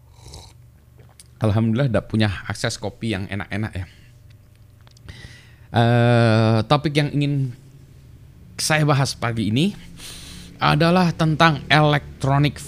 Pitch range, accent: 90-120 Hz, native